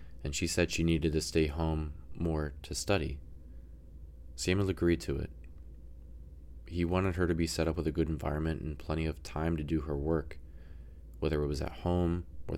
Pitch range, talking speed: 75-85 Hz, 190 wpm